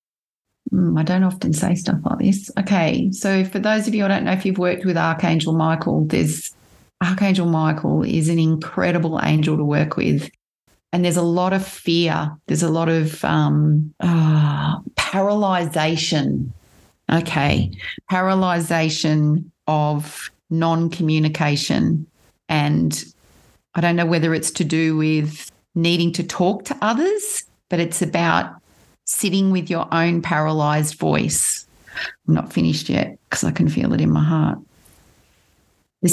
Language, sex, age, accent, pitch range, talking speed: English, female, 30-49, Australian, 155-180 Hz, 140 wpm